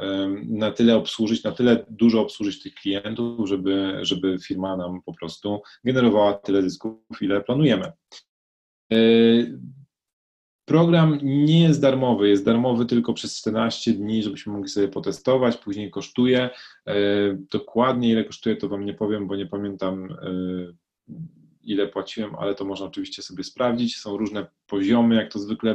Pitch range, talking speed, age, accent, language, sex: 100-115 Hz, 140 wpm, 30-49, native, Polish, male